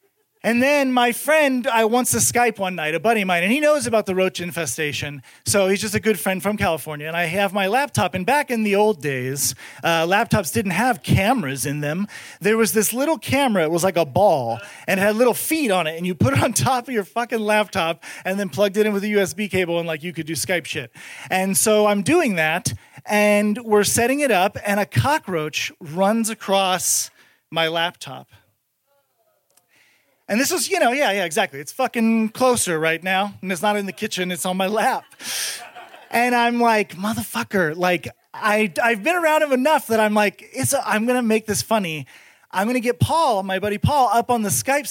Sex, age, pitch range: male, 40-59, 185-250 Hz